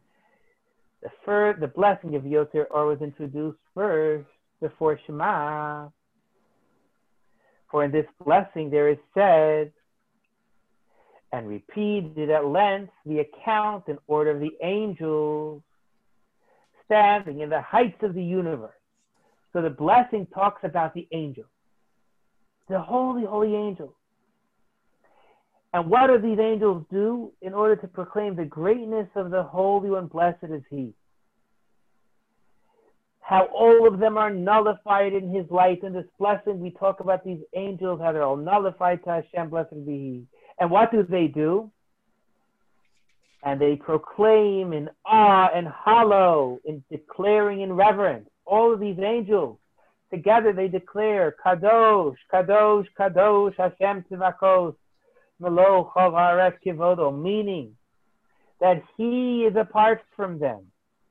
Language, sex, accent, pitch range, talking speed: English, male, American, 155-205 Hz, 130 wpm